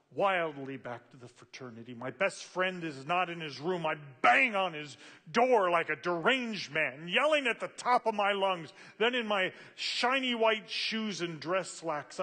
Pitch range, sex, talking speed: 135-180 Hz, male, 185 wpm